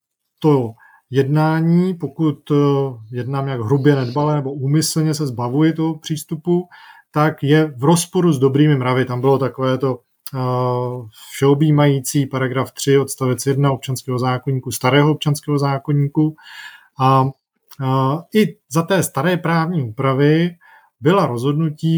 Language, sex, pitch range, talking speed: Czech, male, 130-160 Hz, 115 wpm